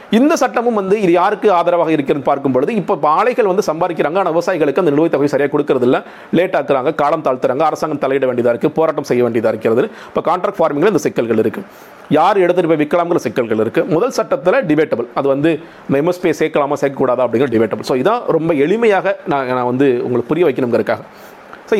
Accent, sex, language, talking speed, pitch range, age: native, male, Tamil, 175 wpm, 140-195 Hz, 40-59